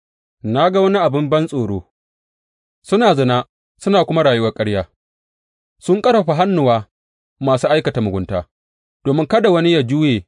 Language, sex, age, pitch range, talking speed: English, male, 30-49, 85-145 Hz, 110 wpm